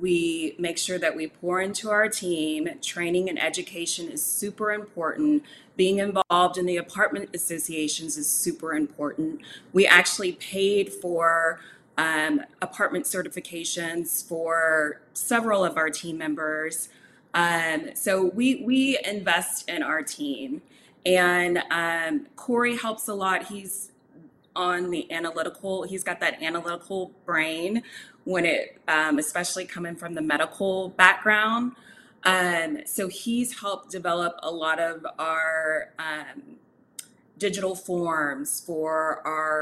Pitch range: 165-200 Hz